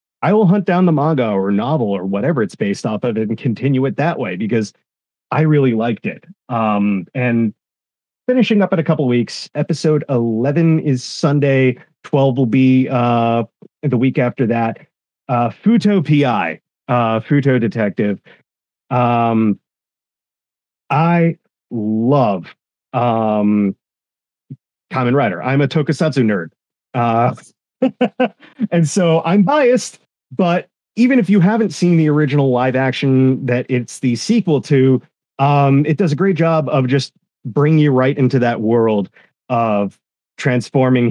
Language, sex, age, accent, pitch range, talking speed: English, male, 30-49, American, 115-155 Hz, 145 wpm